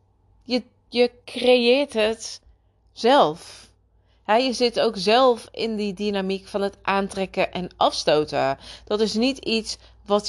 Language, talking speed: Dutch, 120 wpm